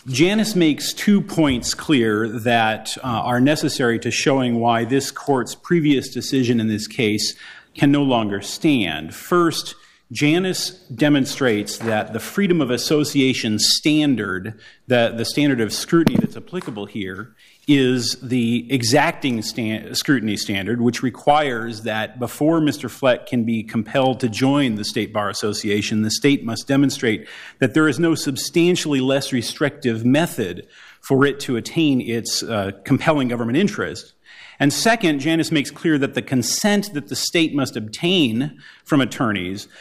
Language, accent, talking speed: English, American, 145 wpm